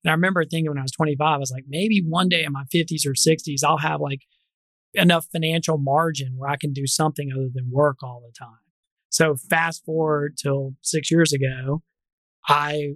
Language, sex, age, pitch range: English, male, 30-49, 140-160 Hz